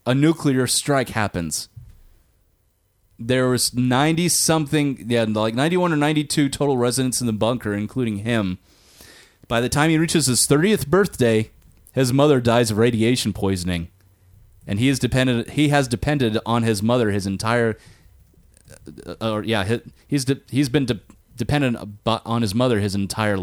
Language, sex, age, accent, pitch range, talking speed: English, male, 30-49, American, 100-135 Hz, 155 wpm